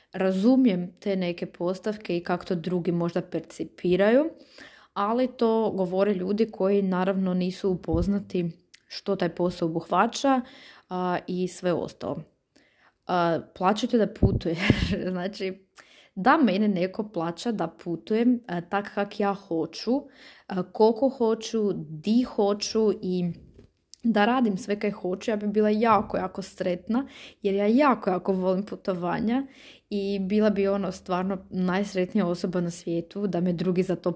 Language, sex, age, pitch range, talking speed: Croatian, female, 20-39, 180-215 Hz, 135 wpm